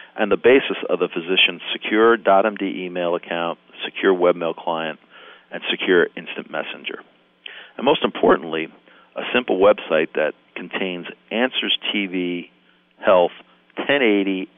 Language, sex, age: English, male, 50-69